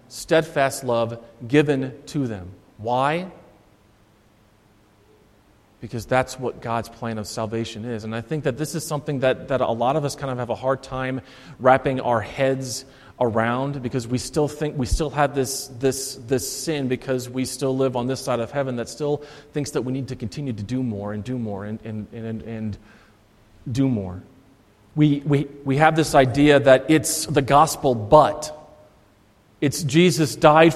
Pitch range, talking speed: 115-150 Hz, 180 wpm